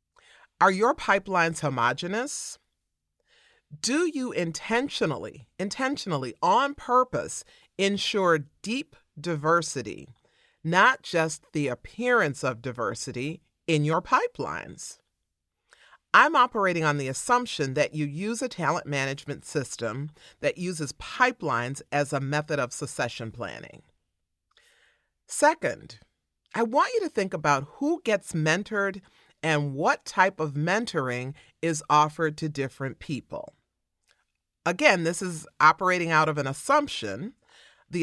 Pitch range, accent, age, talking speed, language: 145-205 Hz, American, 40-59, 115 wpm, English